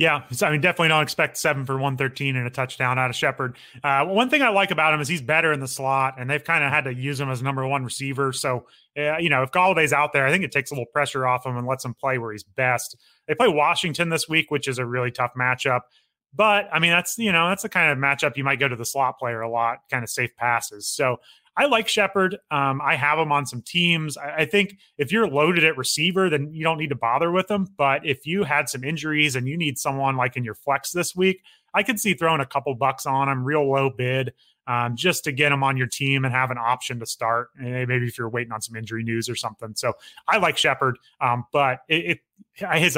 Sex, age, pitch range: male, 30-49, 125-155 Hz